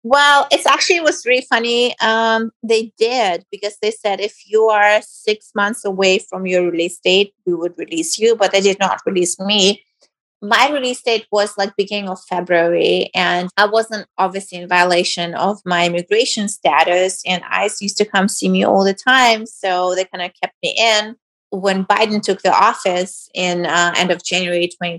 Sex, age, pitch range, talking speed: female, 30-49, 175-220 Hz, 190 wpm